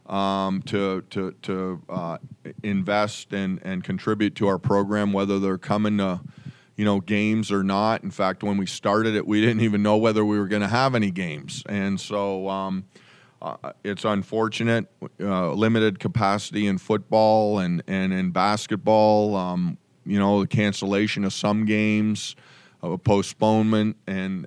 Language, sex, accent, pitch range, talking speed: English, male, American, 100-110 Hz, 160 wpm